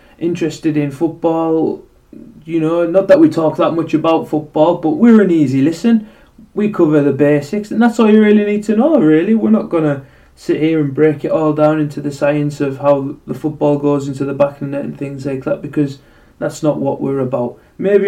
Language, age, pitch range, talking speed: English, 20-39, 135-170 Hz, 220 wpm